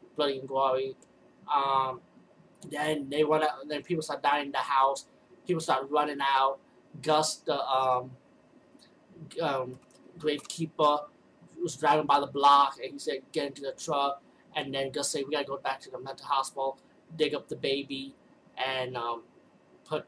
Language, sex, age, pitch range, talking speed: English, male, 20-39, 135-155 Hz, 165 wpm